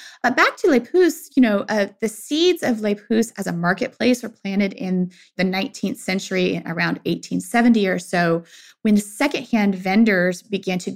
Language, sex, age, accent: English, female, 20-39, American